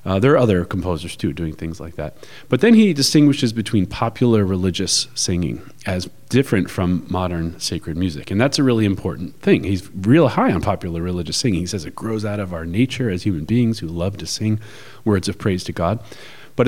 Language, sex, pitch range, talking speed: English, male, 85-115 Hz, 210 wpm